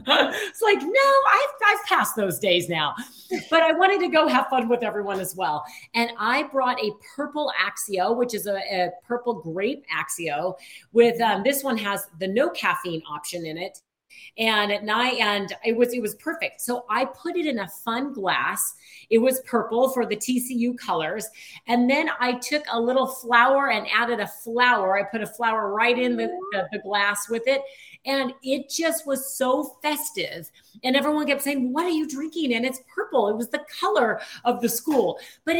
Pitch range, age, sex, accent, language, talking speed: 205-275 Hz, 40-59, female, American, English, 195 wpm